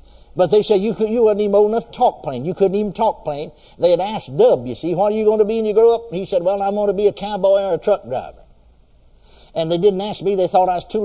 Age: 60-79